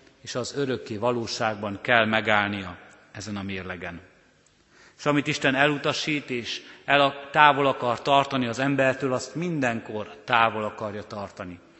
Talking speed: 125 wpm